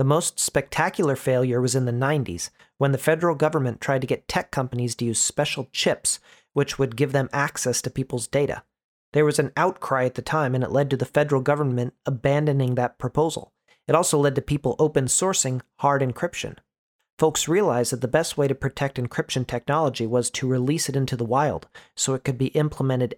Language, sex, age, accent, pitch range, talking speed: English, male, 40-59, American, 125-145 Hz, 200 wpm